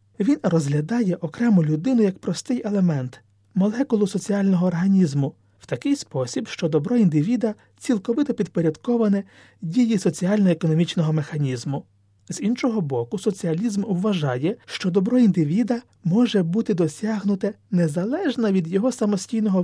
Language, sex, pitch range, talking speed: Ukrainian, male, 155-220 Hz, 115 wpm